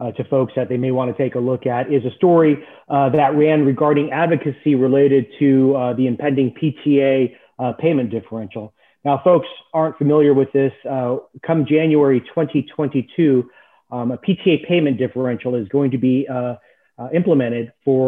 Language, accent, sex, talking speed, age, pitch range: English, American, male, 175 wpm, 30-49, 125-150 Hz